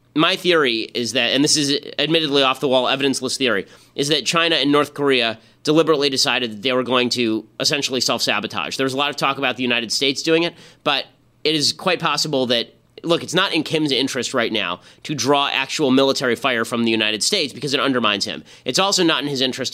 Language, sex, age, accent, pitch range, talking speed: English, male, 30-49, American, 120-150 Hz, 220 wpm